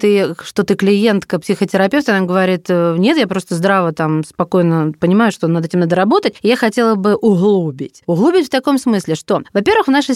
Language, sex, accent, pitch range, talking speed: Russian, female, native, 185-245 Hz, 175 wpm